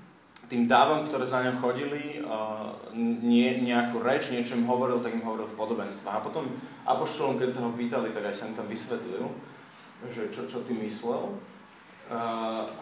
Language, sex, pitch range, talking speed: Slovak, male, 115-125 Hz, 165 wpm